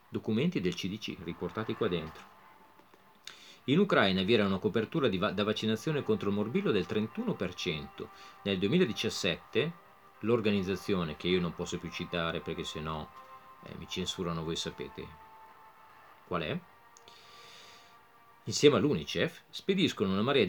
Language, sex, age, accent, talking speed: Italian, male, 40-59, native, 130 wpm